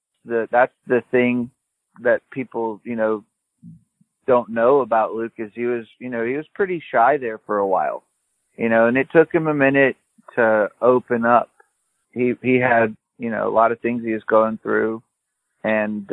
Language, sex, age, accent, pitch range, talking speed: English, male, 40-59, American, 115-125 Hz, 185 wpm